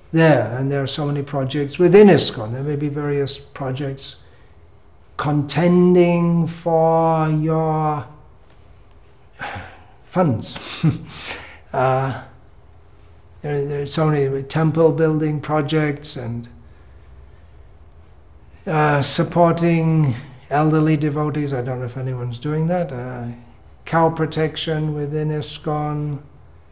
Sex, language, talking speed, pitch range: male, English, 95 wpm, 120-160 Hz